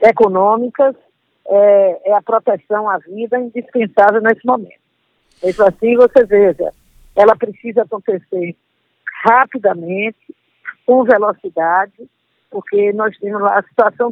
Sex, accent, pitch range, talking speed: female, Brazilian, 195-245 Hz, 110 wpm